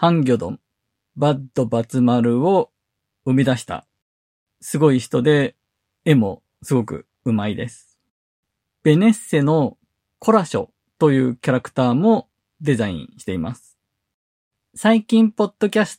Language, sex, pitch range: Japanese, male, 115-165 Hz